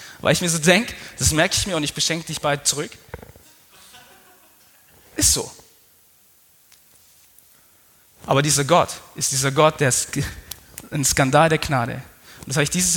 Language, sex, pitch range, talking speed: German, male, 135-180 Hz, 155 wpm